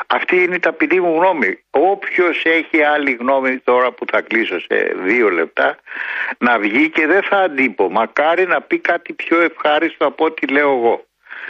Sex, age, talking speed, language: male, 60-79, 170 wpm, Greek